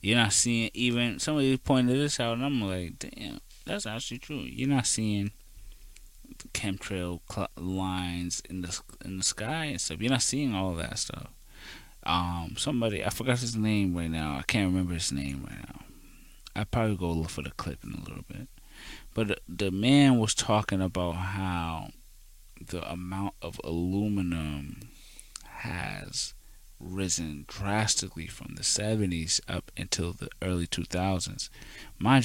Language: English